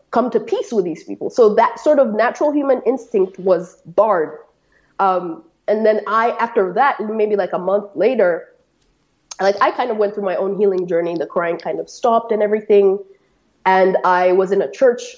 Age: 20-39